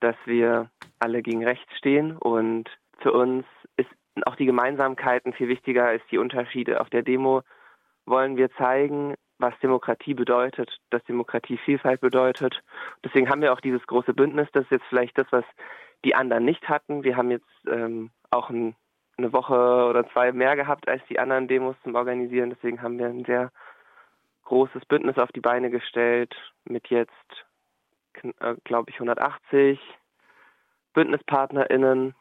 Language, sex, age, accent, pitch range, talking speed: German, male, 20-39, German, 120-130 Hz, 155 wpm